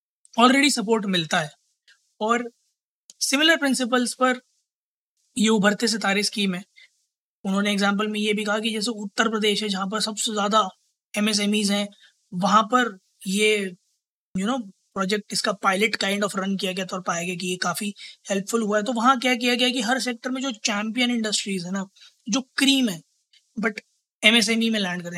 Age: 20-39